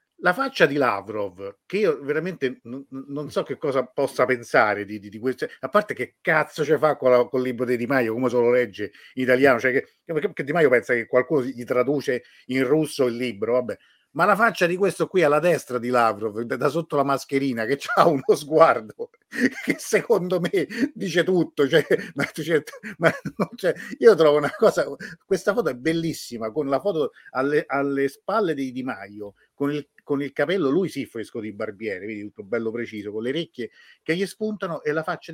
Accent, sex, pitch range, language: native, male, 120-165 Hz, Italian